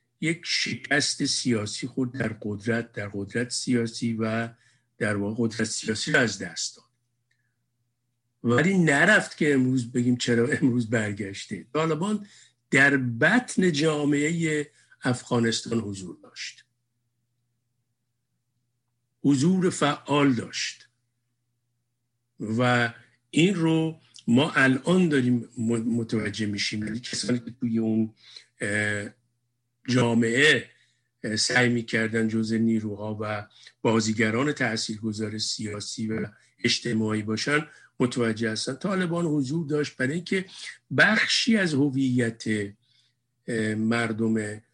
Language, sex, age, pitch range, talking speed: Persian, male, 50-69, 110-135 Hz, 95 wpm